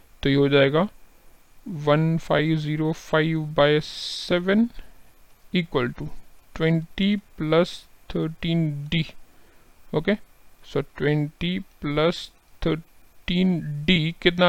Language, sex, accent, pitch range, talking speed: Hindi, male, native, 150-175 Hz, 80 wpm